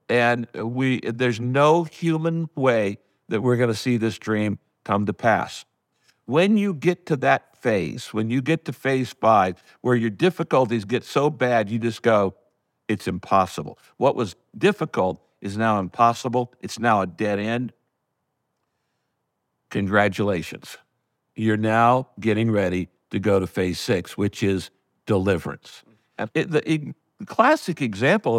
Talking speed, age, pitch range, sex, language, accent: 140 wpm, 60-79, 110-155 Hz, male, English, American